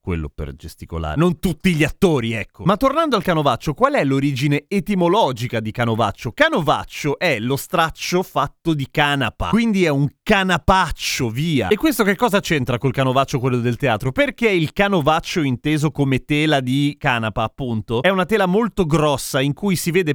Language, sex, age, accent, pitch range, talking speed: Italian, male, 30-49, native, 130-185 Hz, 175 wpm